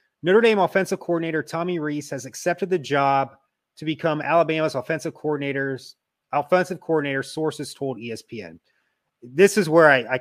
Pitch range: 135-175 Hz